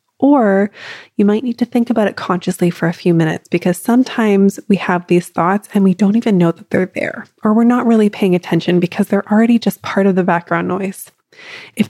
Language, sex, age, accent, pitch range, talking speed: English, female, 20-39, American, 185-240 Hz, 215 wpm